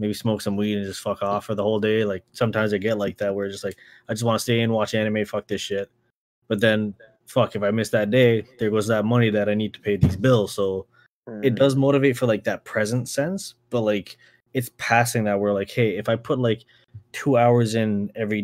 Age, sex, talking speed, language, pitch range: 20-39, male, 250 wpm, English, 100-120 Hz